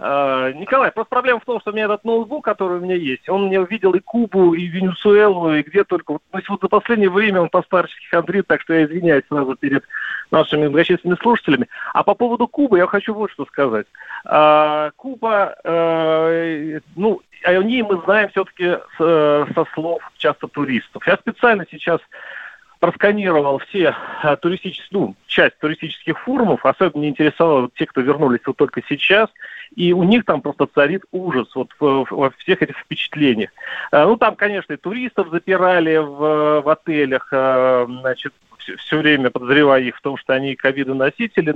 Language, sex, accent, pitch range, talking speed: Russian, male, native, 150-205 Hz, 160 wpm